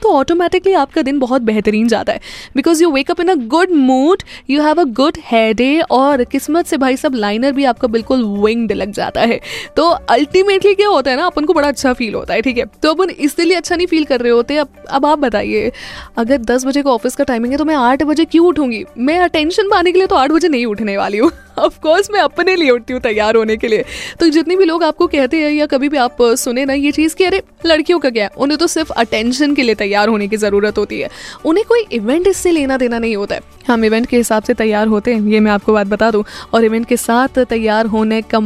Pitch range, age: 230-315 Hz, 20-39